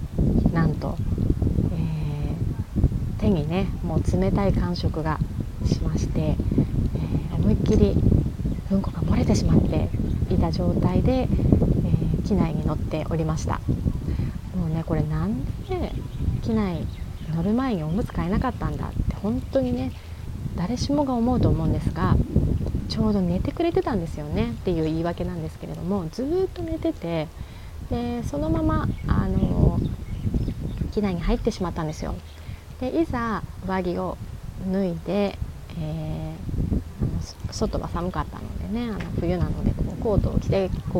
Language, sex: Japanese, female